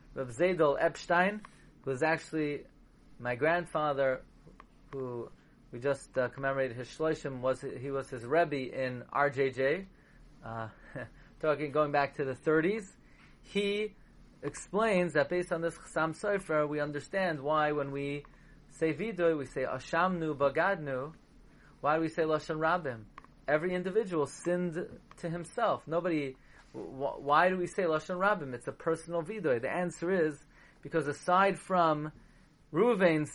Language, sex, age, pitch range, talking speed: English, male, 30-49, 135-175 Hz, 135 wpm